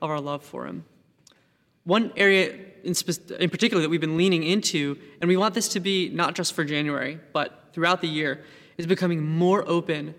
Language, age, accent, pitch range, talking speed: English, 20-39, American, 155-185 Hz, 190 wpm